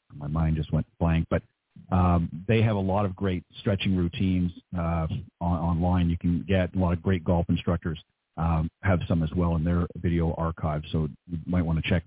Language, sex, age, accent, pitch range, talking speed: English, male, 40-59, American, 90-110 Hz, 210 wpm